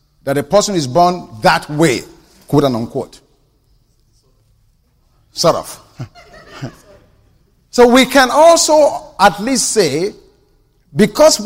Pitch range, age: 145-195 Hz, 50-69